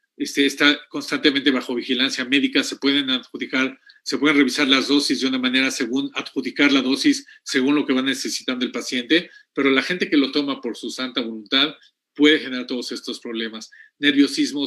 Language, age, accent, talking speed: Spanish, 50-69, Mexican, 180 wpm